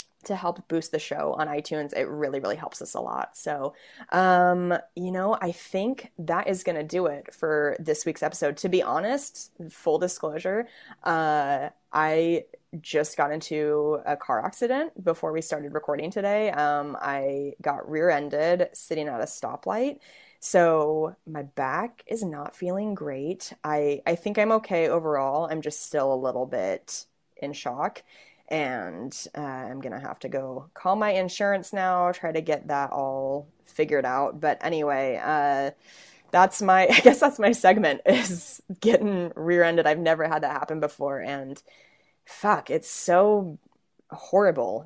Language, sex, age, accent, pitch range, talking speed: English, female, 20-39, American, 145-185 Hz, 160 wpm